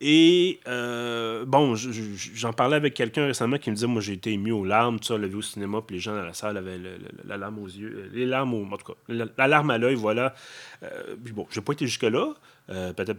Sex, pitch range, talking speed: male, 110-145 Hz, 260 wpm